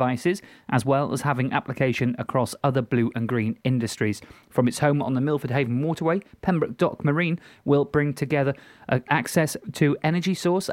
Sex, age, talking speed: male, 30-49, 170 wpm